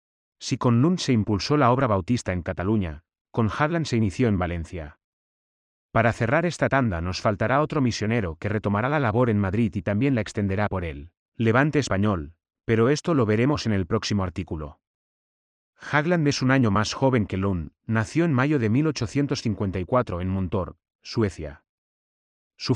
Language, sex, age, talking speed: Spanish, male, 30-49, 165 wpm